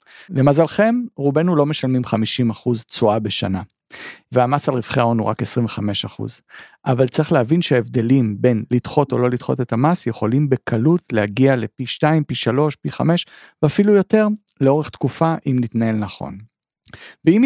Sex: male